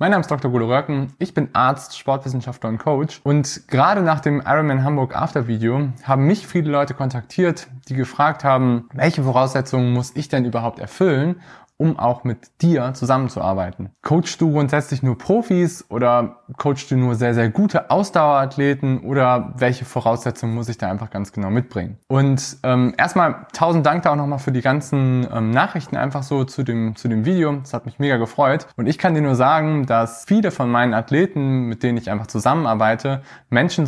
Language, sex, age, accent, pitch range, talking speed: German, male, 20-39, German, 120-145 Hz, 180 wpm